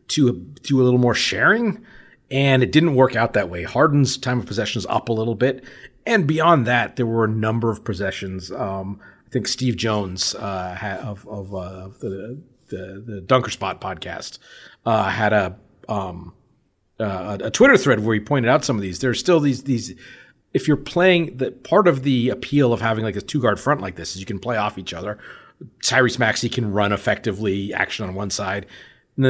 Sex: male